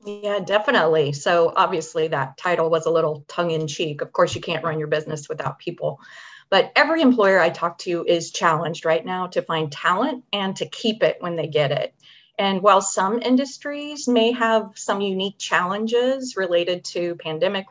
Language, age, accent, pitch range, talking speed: English, 30-49, American, 165-215 Hz, 185 wpm